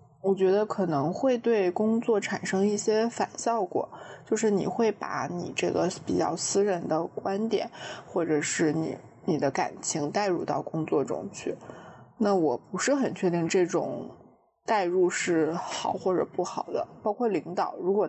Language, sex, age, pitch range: Chinese, female, 20-39, 180-225 Hz